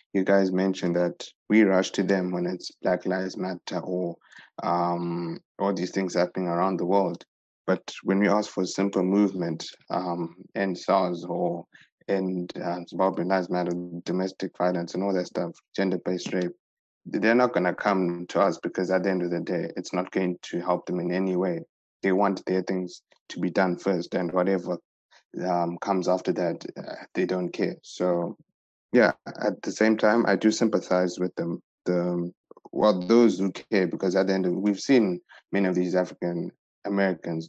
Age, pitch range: 20-39, 90-95 Hz